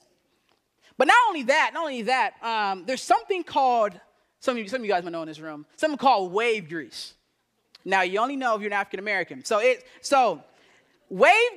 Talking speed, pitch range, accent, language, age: 200 wpm, 225-300 Hz, American, English, 30-49